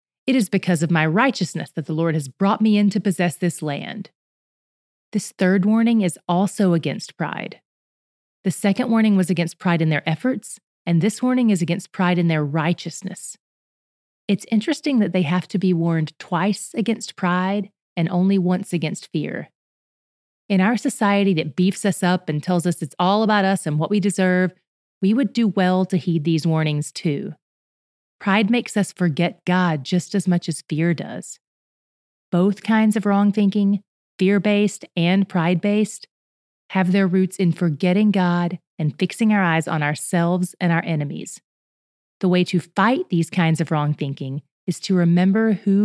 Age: 30-49